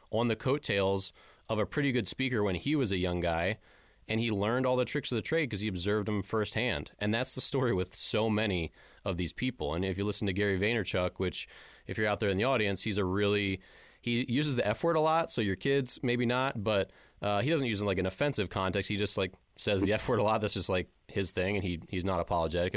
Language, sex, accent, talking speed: English, male, American, 260 wpm